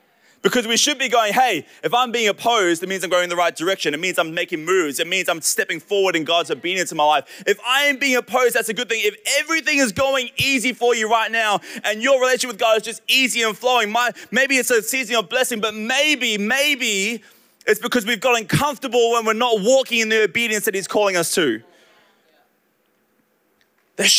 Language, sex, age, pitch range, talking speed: English, male, 20-39, 175-235 Hz, 225 wpm